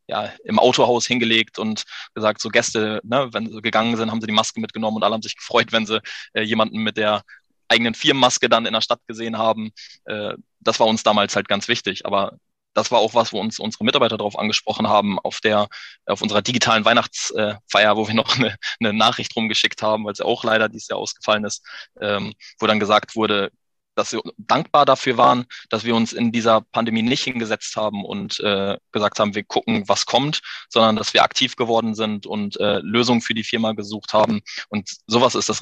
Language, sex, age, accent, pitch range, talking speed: German, male, 20-39, German, 105-115 Hz, 210 wpm